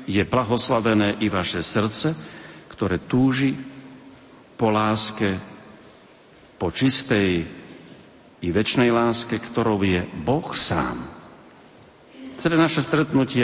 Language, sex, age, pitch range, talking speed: Slovak, male, 50-69, 95-130 Hz, 95 wpm